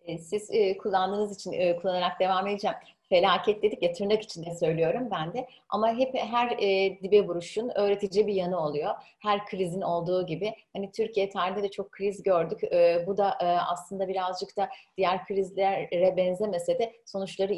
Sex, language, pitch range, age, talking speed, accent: female, Turkish, 180-220 Hz, 30-49, 160 wpm, native